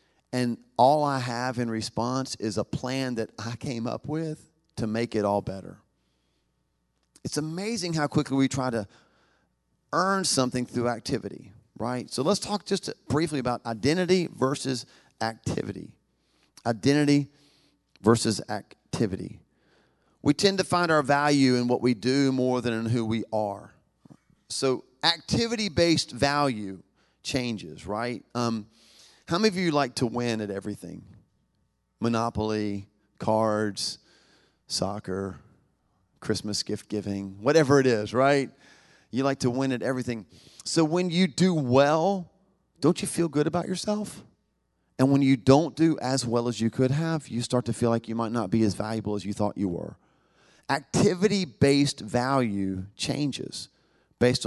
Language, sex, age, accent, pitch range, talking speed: English, male, 40-59, American, 110-150 Hz, 145 wpm